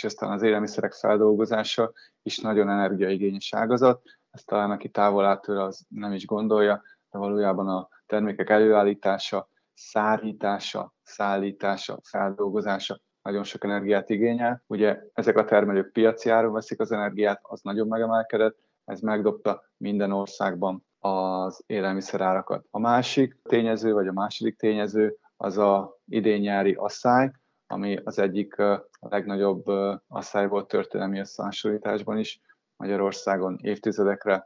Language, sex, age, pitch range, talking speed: Hungarian, male, 20-39, 100-110 Hz, 125 wpm